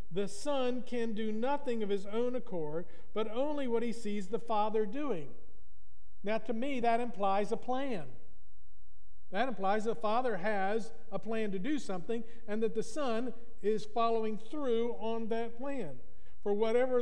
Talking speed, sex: 160 wpm, male